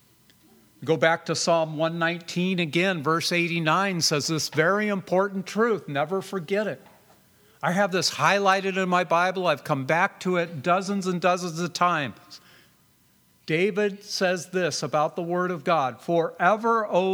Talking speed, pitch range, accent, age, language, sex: 150 wpm, 155-200 Hz, American, 50-69, English, male